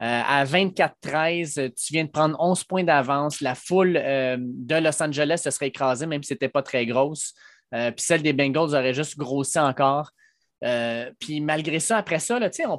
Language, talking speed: French, 195 wpm